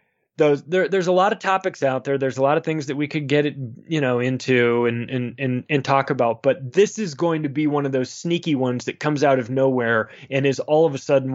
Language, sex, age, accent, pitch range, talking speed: English, male, 20-39, American, 135-170 Hz, 265 wpm